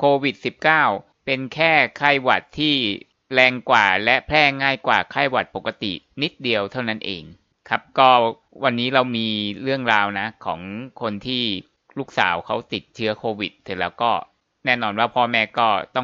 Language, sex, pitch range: Thai, male, 110-135 Hz